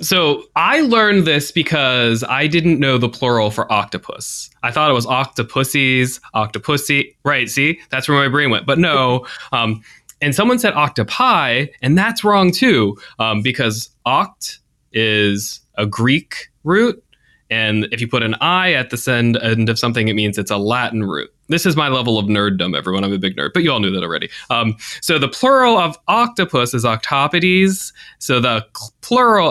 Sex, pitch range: male, 110-150 Hz